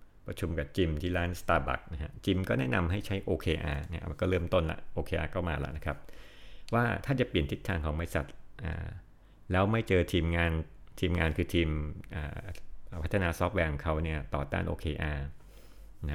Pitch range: 75-90 Hz